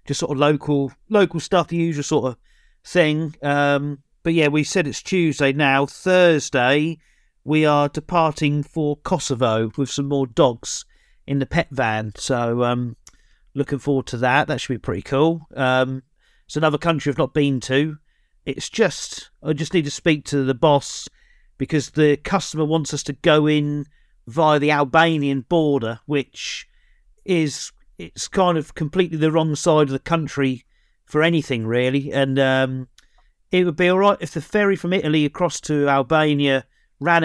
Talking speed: 170 wpm